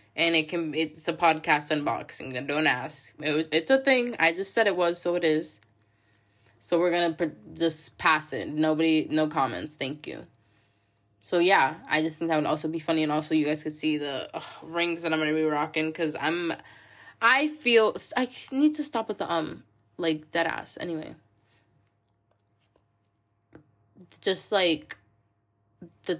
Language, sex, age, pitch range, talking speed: English, female, 10-29, 145-195 Hz, 175 wpm